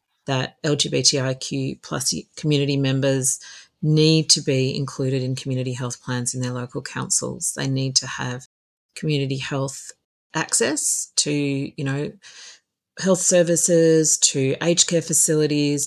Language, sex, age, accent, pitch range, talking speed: English, female, 40-59, Australian, 135-150 Hz, 125 wpm